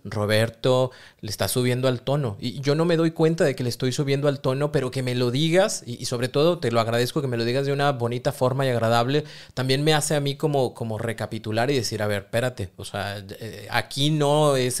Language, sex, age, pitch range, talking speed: Spanish, male, 30-49, 120-160 Hz, 245 wpm